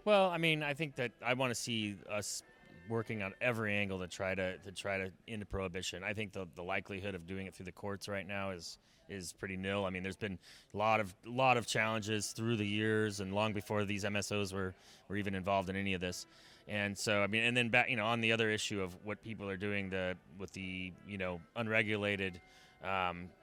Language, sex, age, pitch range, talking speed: English, male, 30-49, 95-110 Hz, 235 wpm